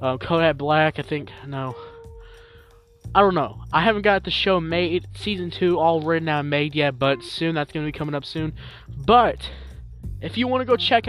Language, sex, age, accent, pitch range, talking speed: English, male, 20-39, American, 145-210 Hz, 205 wpm